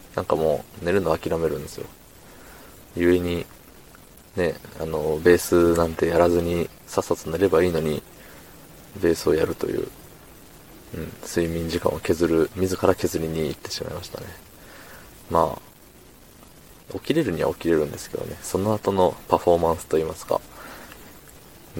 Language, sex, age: Japanese, male, 20-39